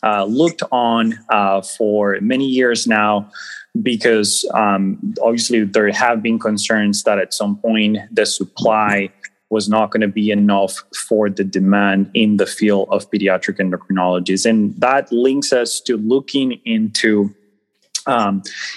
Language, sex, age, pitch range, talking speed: English, male, 20-39, 100-115 Hz, 140 wpm